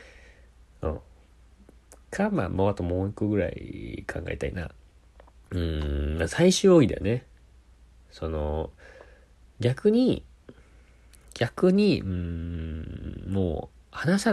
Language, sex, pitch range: Japanese, male, 75-115 Hz